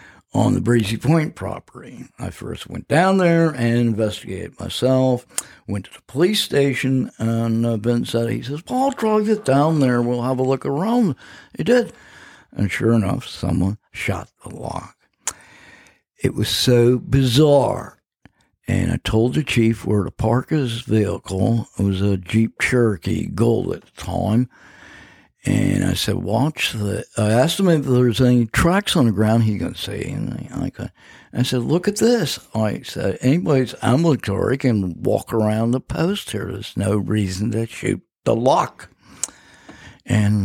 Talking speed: 160 wpm